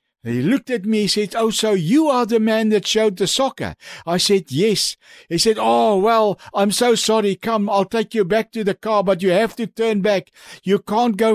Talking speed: 225 wpm